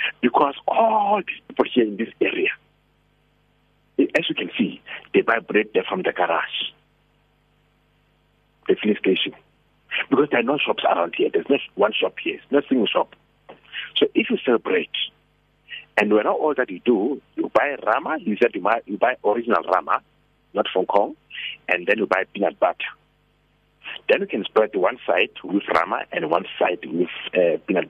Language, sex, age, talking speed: English, male, 60-79, 180 wpm